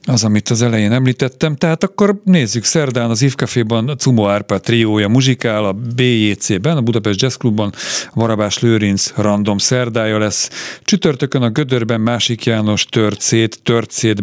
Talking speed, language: 140 wpm, Hungarian